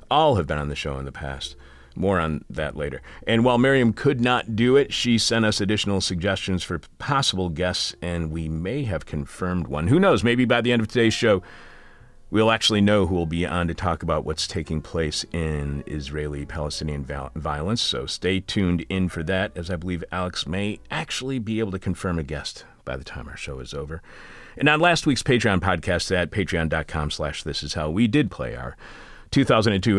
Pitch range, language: 75-105 Hz, English